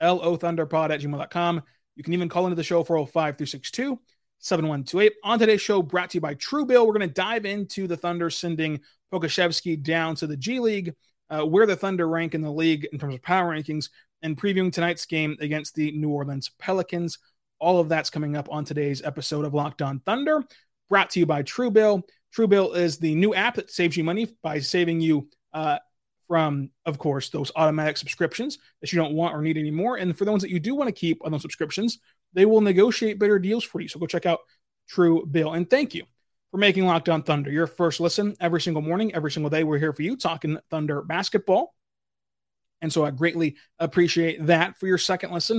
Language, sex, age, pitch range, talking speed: English, male, 20-39, 155-190 Hz, 215 wpm